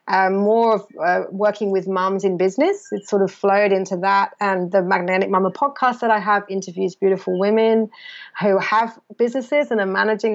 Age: 30-49